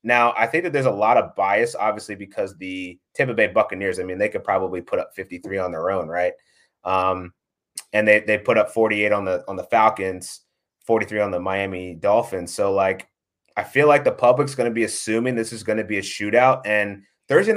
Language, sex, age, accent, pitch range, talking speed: English, male, 30-49, American, 105-140 Hz, 220 wpm